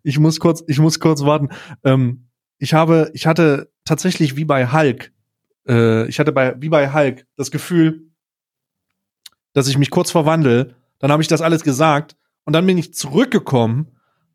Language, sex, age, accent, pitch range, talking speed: German, male, 30-49, German, 135-165 Hz, 170 wpm